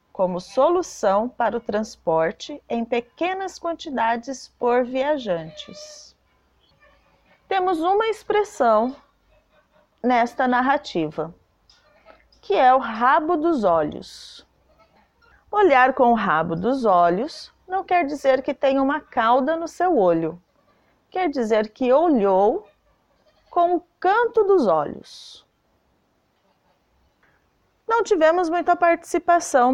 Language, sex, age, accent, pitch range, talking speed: Portuguese, female, 30-49, Brazilian, 220-335 Hz, 100 wpm